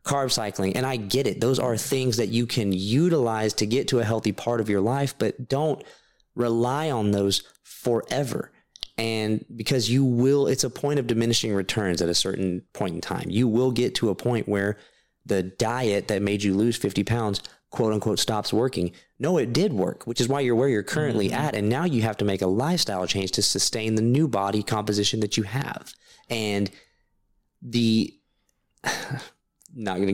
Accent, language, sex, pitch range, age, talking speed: American, English, male, 100-130 Hz, 30-49, 195 wpm